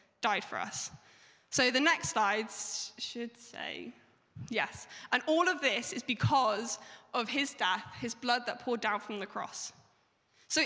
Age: 10-29